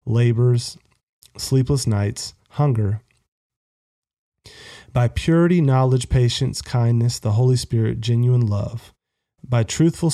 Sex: male